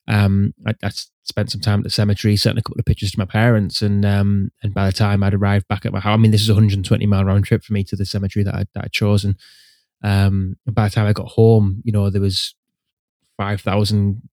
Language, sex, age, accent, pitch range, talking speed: English, male, 10-29, British, 100-110 Hz, 260 wpm